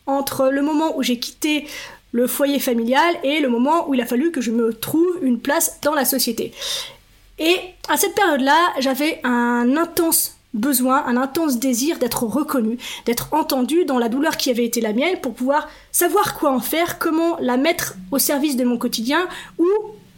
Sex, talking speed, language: female, 185 wpm, French